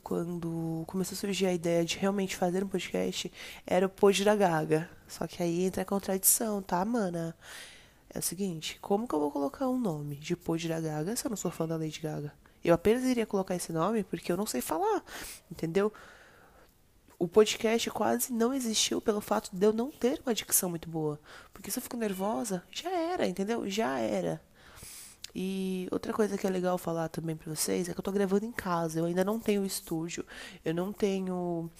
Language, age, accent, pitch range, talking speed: Portuguese, 20-39, Brazilian, 170-200 Hz, 205 wpm